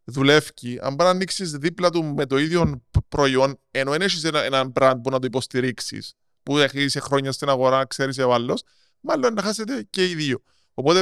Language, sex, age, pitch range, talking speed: Greek, male, 20-39, 130-175 Hz, 185 wpm